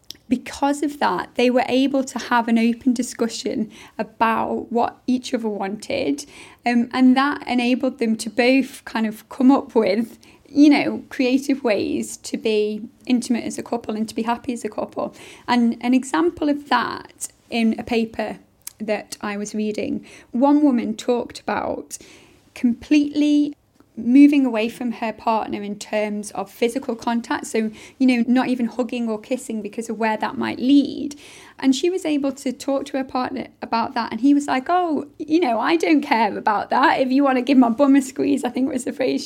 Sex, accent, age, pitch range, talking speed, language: female, British, 20-39, 230-280 Hz, 190 wpm, English